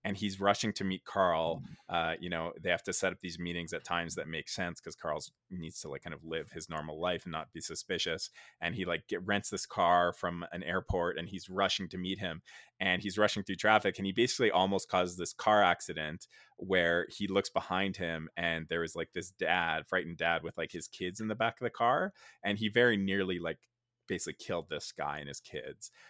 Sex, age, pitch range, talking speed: male, 20-39, 80-95 Hz, 230 wpm